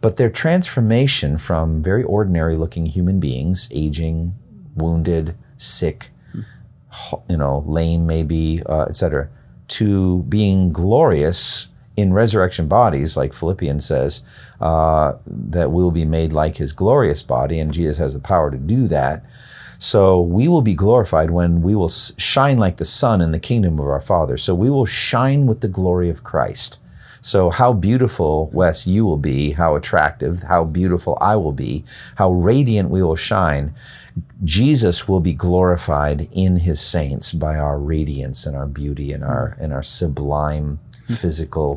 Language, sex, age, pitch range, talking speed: English, male, 50-69, 75-100 Hz, 155 wpm